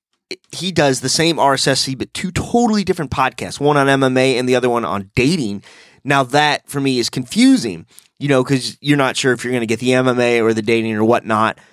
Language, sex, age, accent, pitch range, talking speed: English, male, 30-49, American, 115-140 Hz, 225 wpm